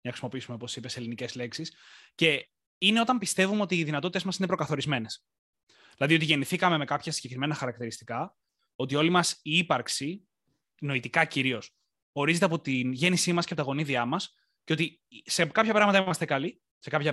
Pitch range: 130-180 Hz